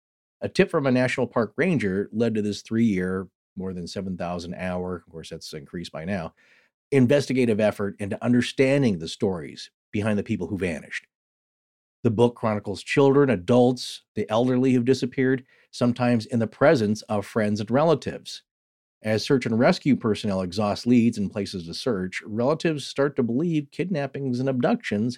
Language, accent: English, American